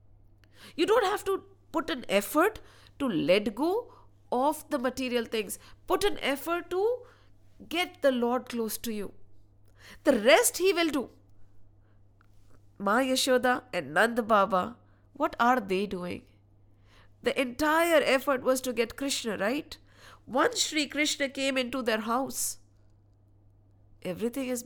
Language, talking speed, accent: English, 135 wpm, Indian